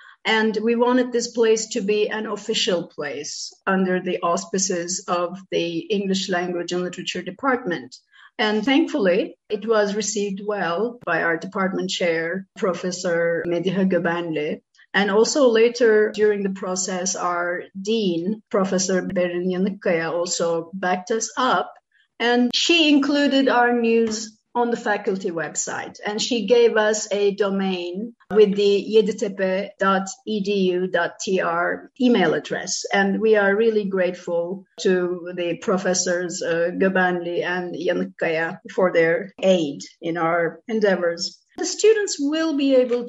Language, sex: Turkish, female